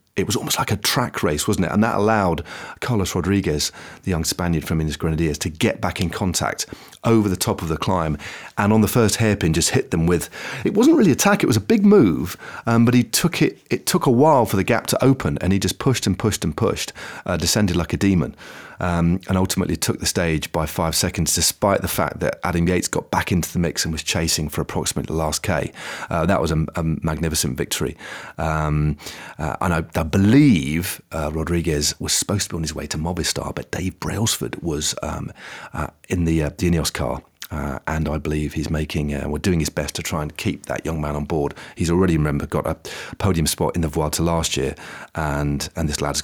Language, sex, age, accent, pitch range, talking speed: English, male, 40-59, British, 75-95 Hz, 230 wpm